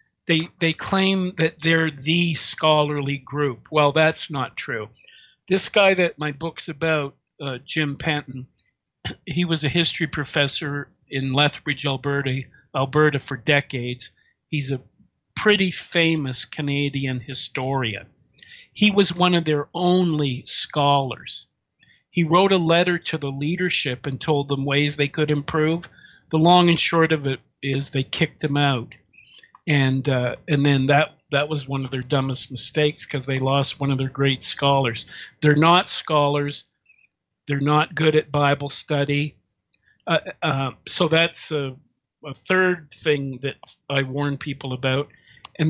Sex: male